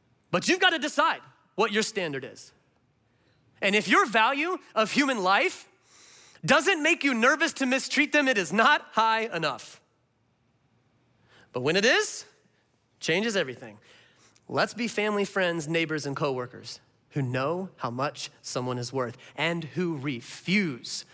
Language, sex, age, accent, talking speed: English, male, 30-49, American, 145 wpm